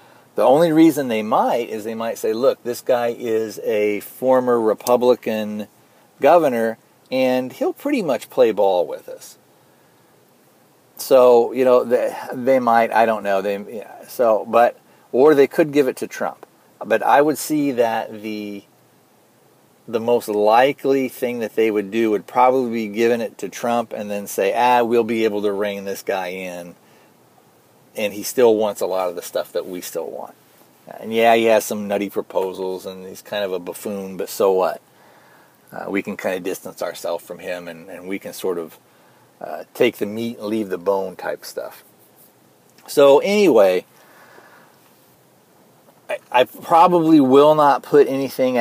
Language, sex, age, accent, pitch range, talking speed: English, male, 40-59, American, 105-130 Hz, 175 wpm